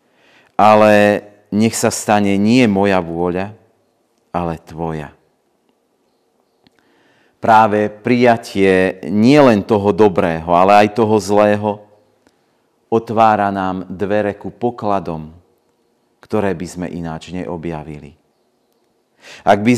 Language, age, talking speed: Slovak, 40-59, 90 wpm